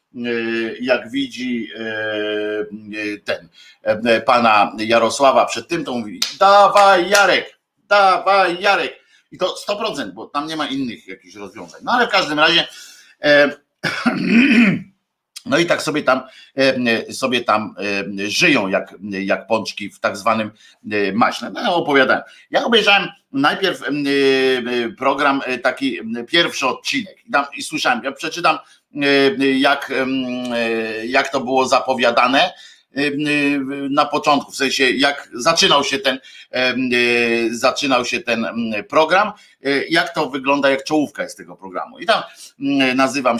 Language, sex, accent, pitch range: Polish, male, native, 120-155 Hz